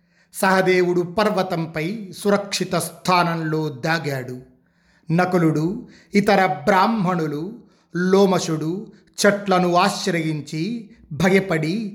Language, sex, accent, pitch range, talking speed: Telugu, male, native, 170-200 Hz, 60 wpm